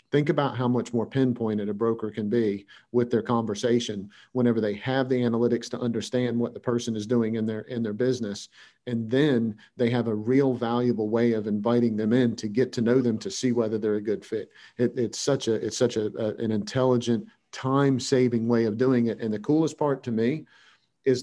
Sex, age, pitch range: male, 40-59, 115-130 Hz